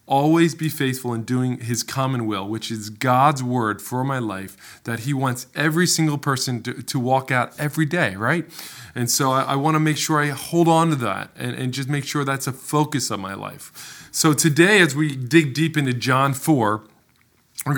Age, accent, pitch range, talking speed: 20-39, American, 120-150 Hz, 205 wpm